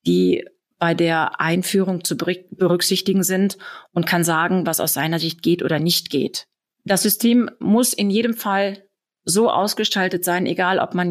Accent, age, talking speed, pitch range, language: German, 30-49, 160 wpm, 170-205 Hz, German